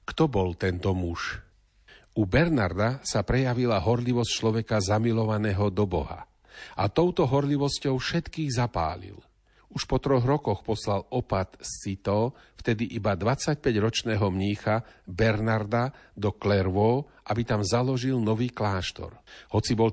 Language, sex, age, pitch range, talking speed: Slovak, male, 50-69, 100-130 Hz, 120 wpm